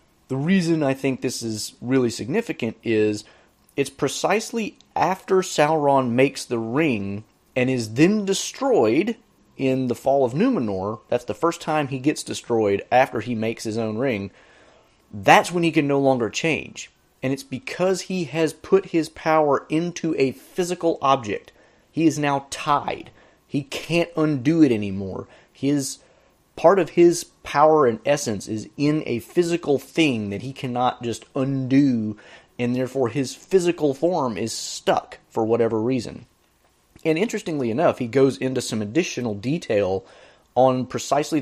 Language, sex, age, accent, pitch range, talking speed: English, male, 30-49, American, 115-155 Hz, 150 wpm